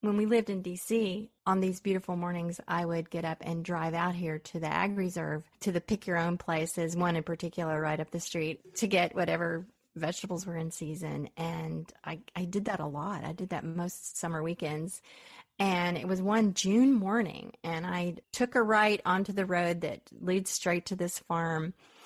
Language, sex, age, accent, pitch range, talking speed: English, female, 30-49, American, 170-200 Hz, 195 wpm